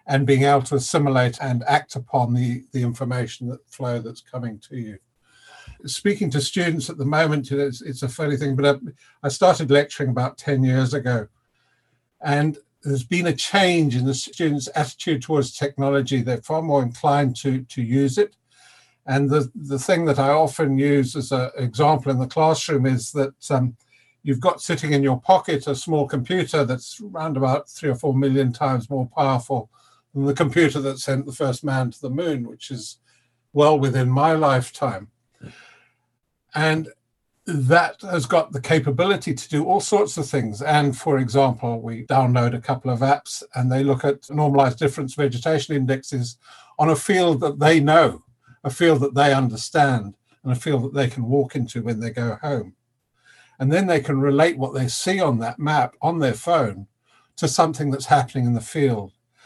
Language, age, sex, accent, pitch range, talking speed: English, 50-69, male, British, 125-150 Hz, 180 wpm